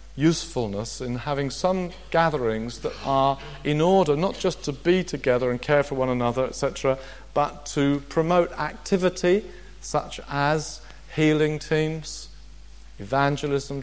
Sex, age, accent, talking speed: male, 50-69, British, 125 wpm